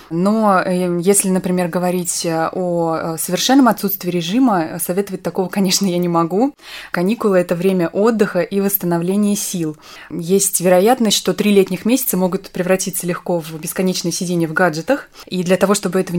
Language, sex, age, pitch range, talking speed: Russian, female, 20-39, 175-200 Hz, 150 wpm